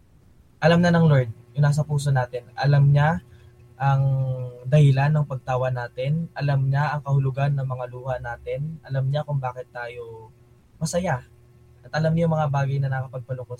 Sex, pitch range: male, 120-155 Hz